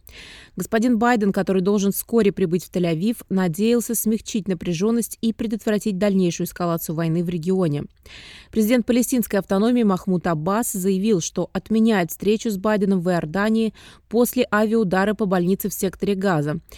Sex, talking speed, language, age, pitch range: female, 135 wpm, Russian, 20-39, 185-220 Hz